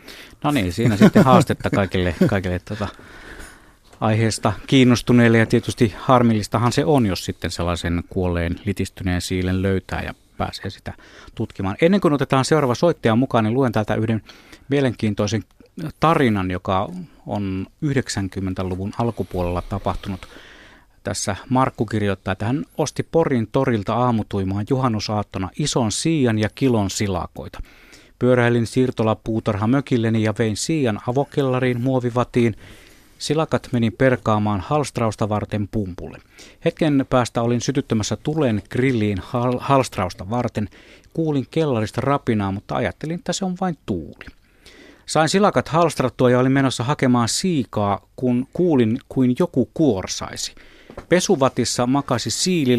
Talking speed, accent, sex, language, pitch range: 120 wpm, native, male, Finnish, 100-135 Hz